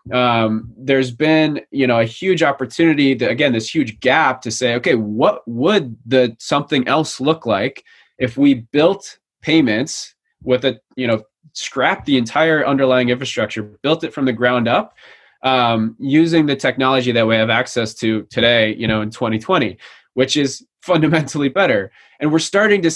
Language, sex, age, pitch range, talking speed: English, male, 20-39, 120-145 Hz, 165 wpm